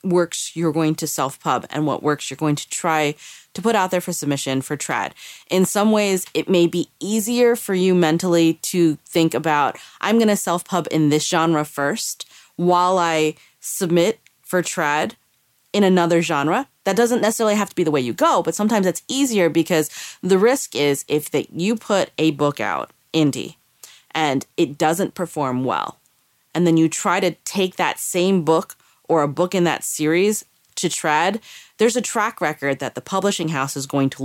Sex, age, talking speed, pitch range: female, 30-49, 190 wpm, 145-185 Hz